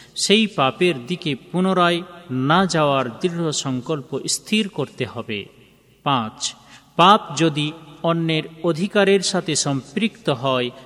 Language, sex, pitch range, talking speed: Bengali, male, 130-165 Hz, 105 wpm